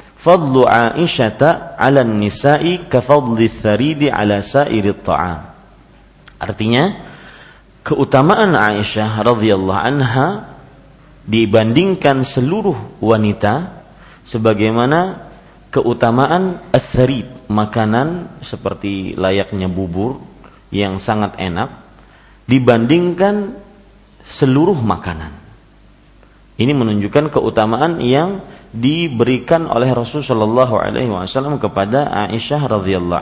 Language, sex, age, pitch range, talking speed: Malay, male, 40-59, 105-145 Hz, 70 wpm